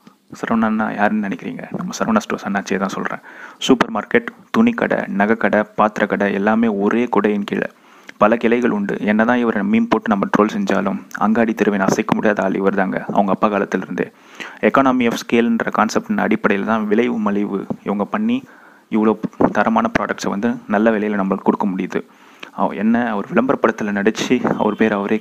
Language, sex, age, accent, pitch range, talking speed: Tamil, male, 20-39, native, 100-115 Hz, 155 wpm